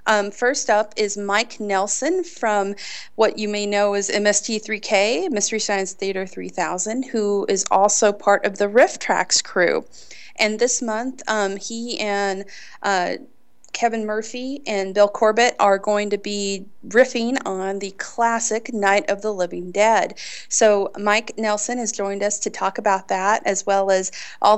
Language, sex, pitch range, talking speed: English, female, 190-215 Hz, 160 wpm